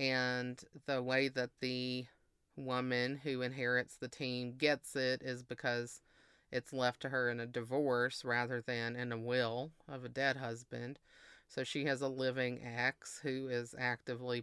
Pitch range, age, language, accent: 125-135 Hz, 30-49, English, American